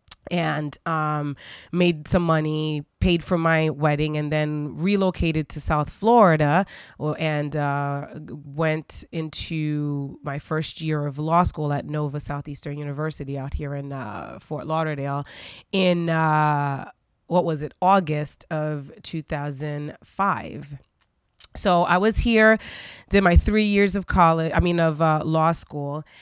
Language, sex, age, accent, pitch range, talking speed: English, female, 20-39, American, 145-175 Hz, 135 wpm